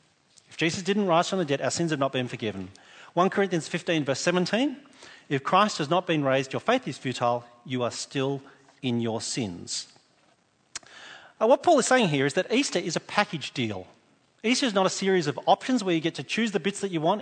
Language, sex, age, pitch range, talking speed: English, male, 40-59, 135-200 Hz, 215 wpm